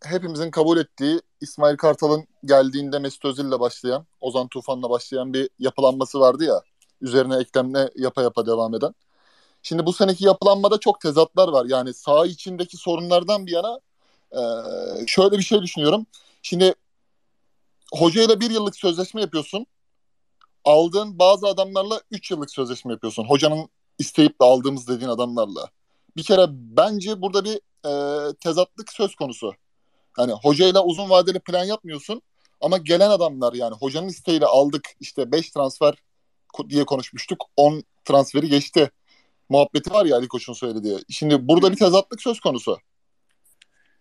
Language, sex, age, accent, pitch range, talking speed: Turkish, male, 30-49, native, 135-195 Hz, 135 wpm